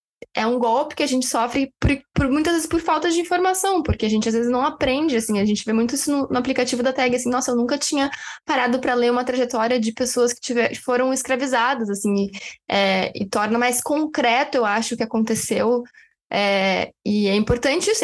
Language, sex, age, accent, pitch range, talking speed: Portuguese, female, 10-29, Brazilian, 215-260 Hz, 205 wpm